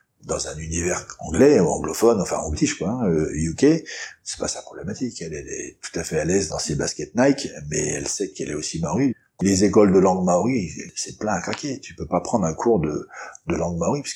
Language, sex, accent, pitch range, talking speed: French, male, French, 85-115 Hz, 230 wpm